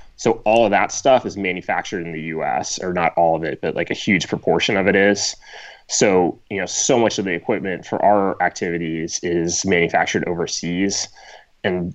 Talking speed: 195 wpm